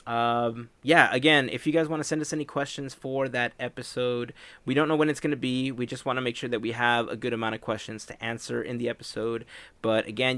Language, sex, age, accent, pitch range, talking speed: English, male, 20-39, American, 115-145 Hz, 255 wpm